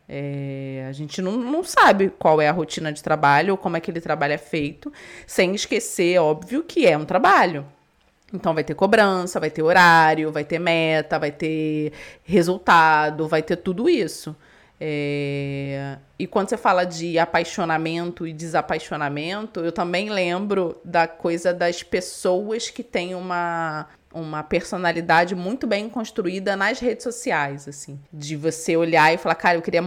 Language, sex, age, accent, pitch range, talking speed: Portuguese, female, 20-39, Brazilian, 160-210 Hz, 155 wpm